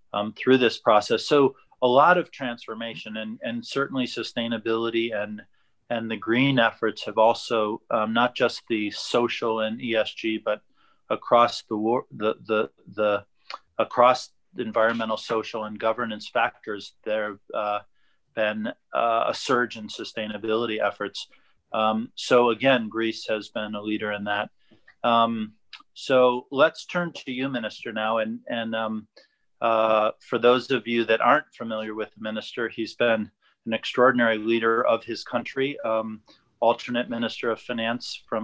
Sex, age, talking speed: male, 30-49, 150 wpm